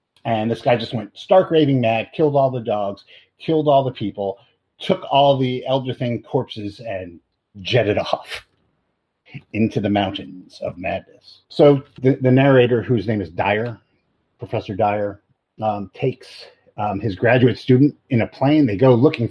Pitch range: 100-130 Hz